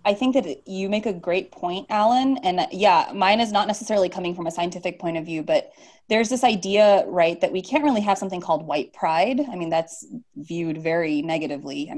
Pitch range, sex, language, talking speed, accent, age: 165-245 Hz, female, English, 215 wpm, American, 30-49